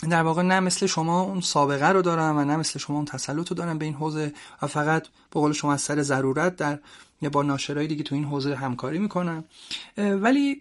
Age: 30-49